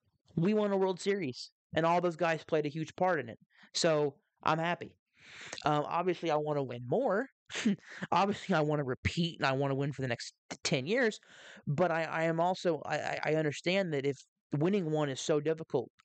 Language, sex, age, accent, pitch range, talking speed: English, male, 20-39, American, 140-165 Hz, 205 wpm